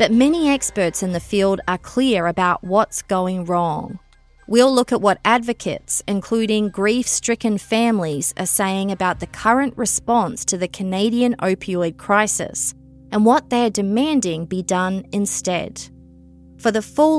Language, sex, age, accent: English, female, 30-49, Australian